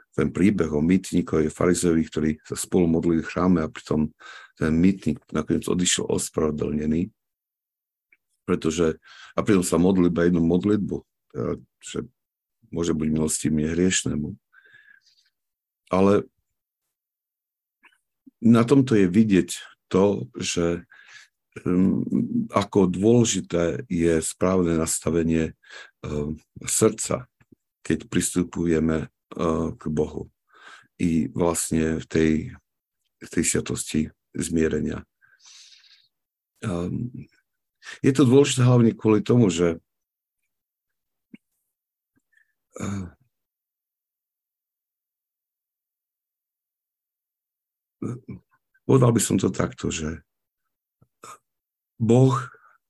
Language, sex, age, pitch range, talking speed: Slovak, male, 50-69, 80-110 Hz, 80 wpm